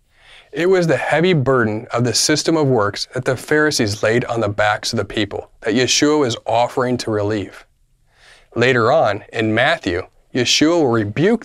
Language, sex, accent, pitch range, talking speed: English, male, American, 110-140 Hz, 175 wpm